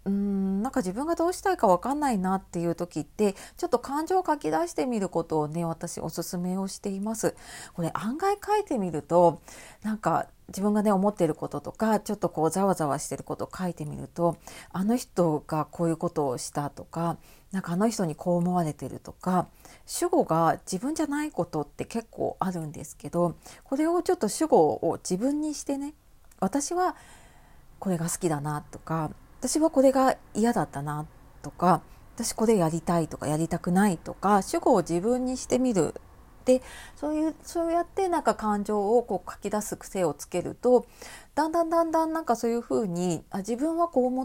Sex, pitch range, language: female, 170-255 Hz, Japanese